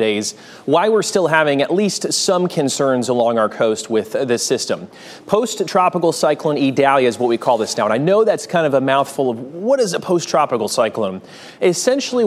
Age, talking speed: 30-49, 190 wpm